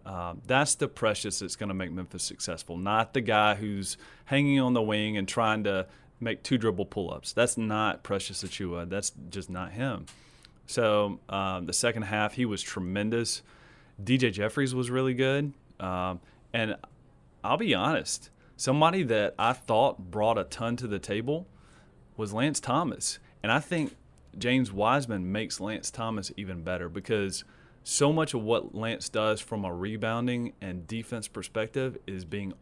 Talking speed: 165 wpm